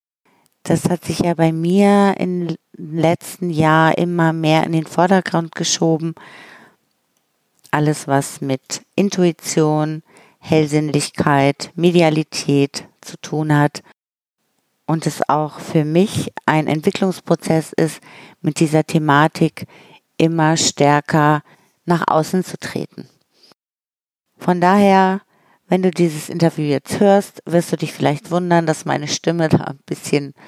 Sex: female